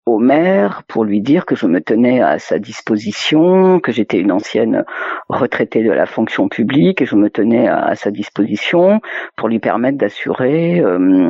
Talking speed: 180 wpm